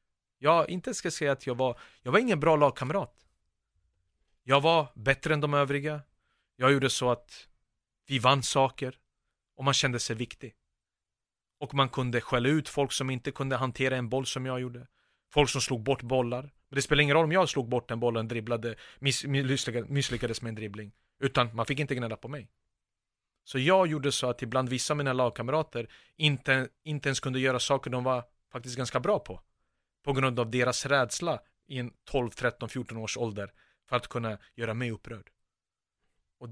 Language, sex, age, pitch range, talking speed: Swedish, male, 30-49, 120-145 Hz, 195 wpm